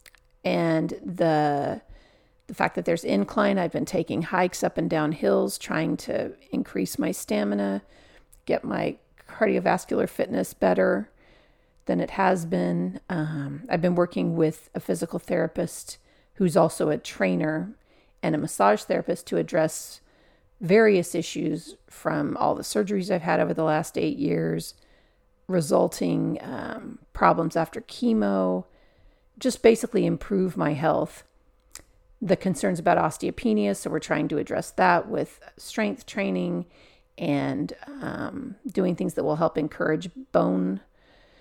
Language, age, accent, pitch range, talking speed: English, 40-59, American, 150-190 Hz, 135 wpm